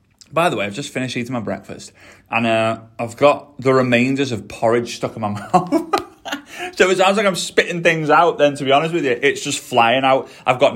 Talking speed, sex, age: 230 wpm, male, 20-39